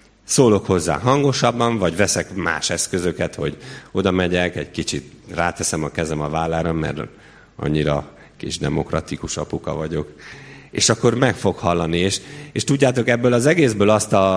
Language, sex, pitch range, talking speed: Hungarian, male, 80-105 Hz, 150 wpm